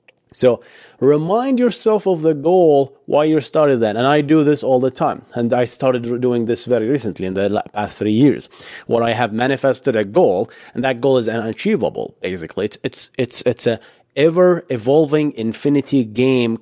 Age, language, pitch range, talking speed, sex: 30-49, English, 115-155 Hz, 185 wpm, male